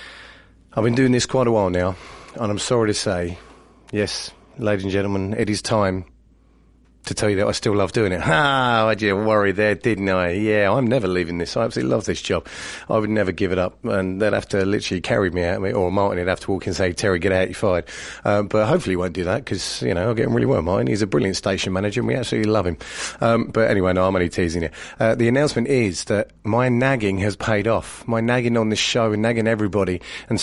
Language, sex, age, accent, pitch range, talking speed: English, male, 30-49, British, 95-115 Hz, 250 wpm